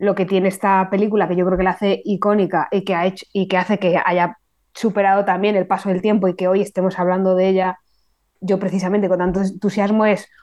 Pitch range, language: 185-205 Hz, Spanish